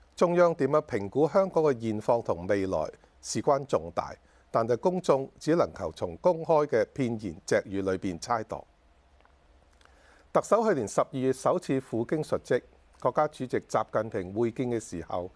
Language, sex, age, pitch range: Chinese, male, 50-69, 105-165 Hz